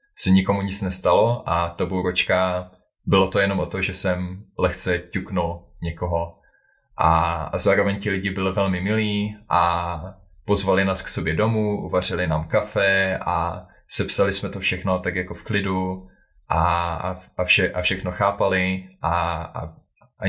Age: 20-39